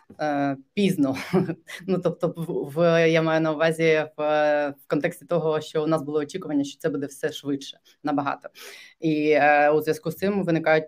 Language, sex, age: Ukrainian, female, 20-39